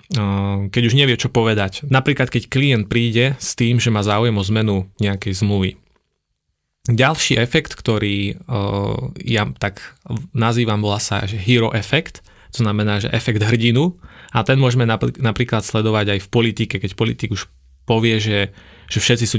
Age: 20-39